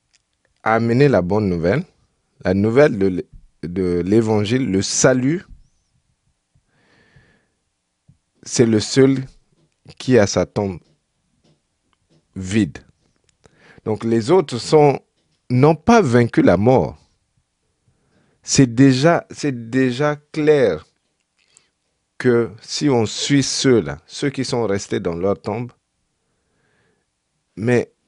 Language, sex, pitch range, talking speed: French, male, 95-135 Hz, 100 wpm